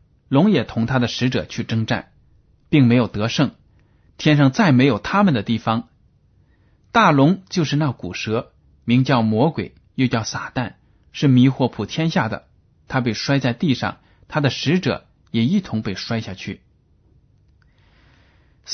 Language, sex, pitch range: Chinese, male, 110-140 Hz